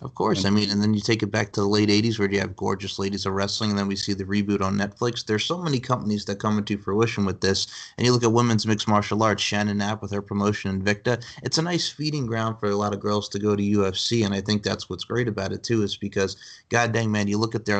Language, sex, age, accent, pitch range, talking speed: English, male, 30-49, American, 100-115 Hz, 285 wpm